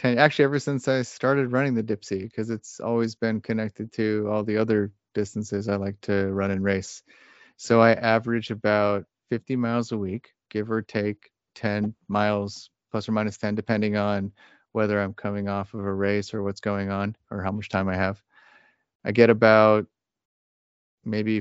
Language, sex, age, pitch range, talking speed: English, male, 30-49, 105-115 Hz, 180 wpm